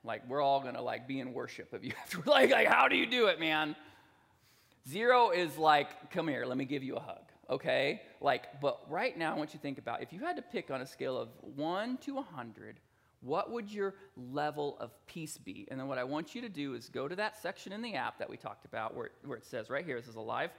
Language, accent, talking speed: English, American, 260 wpm